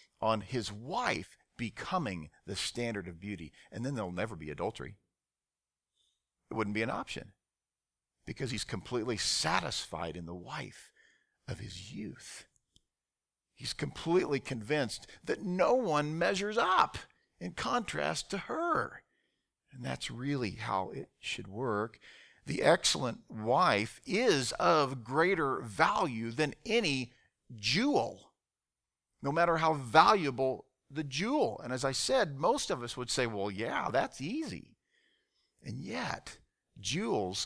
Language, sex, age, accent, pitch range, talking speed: English, male, 50-69, American, 95-140 Hz, 130 wpm